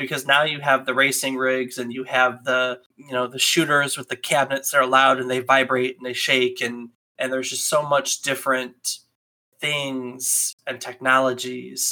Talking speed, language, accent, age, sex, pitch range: 185 wpm, English, American, 20-39, male, 125-145 Hz